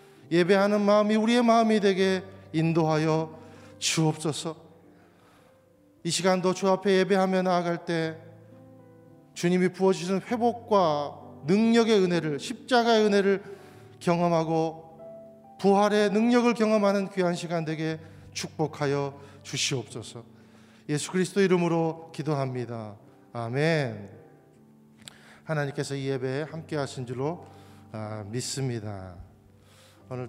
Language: Korean